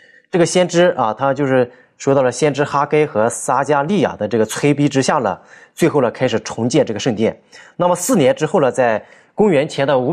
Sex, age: male, 20-39